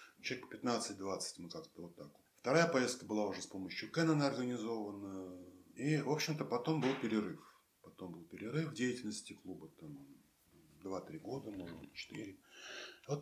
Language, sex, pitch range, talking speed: Russian, male, 100-140 Hz, 150 wpm